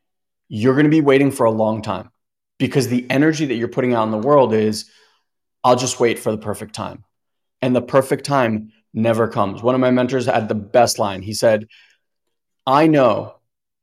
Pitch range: 110-130 Hz